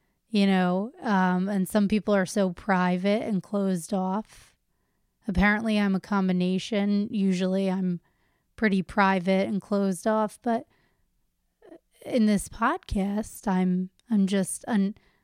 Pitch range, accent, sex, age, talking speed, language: 190-215 Hz, American, female, 30-49, 120 wpm, English